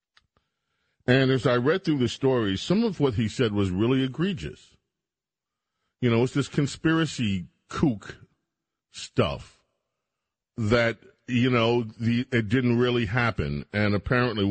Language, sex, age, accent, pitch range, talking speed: English, male, 50-69, American, 90-115 Hz, 130 wpm